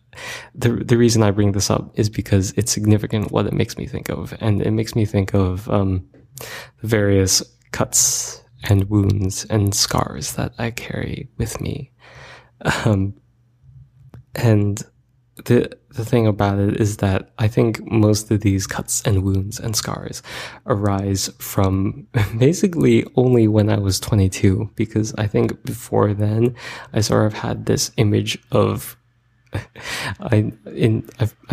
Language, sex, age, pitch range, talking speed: English, male, 20-39, 100-120 Hz, 145 wpm